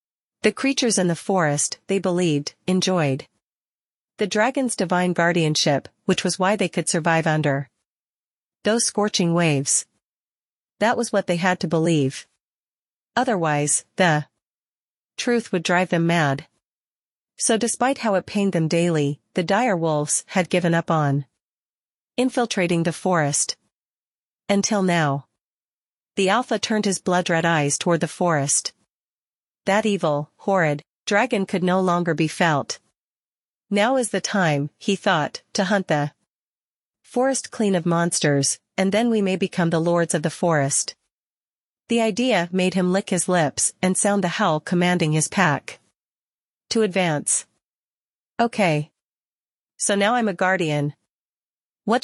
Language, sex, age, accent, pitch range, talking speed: English, female, 40-59, American, 160-205 Hz, 135 wpm